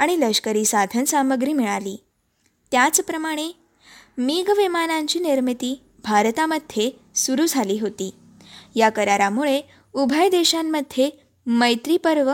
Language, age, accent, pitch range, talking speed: Marathi, 20-39, native, 225-300 Hz, 85 wpm